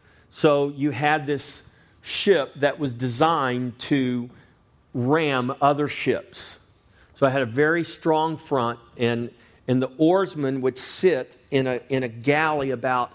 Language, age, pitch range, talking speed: English, 40-59, 115-145 Hz, 140 wpm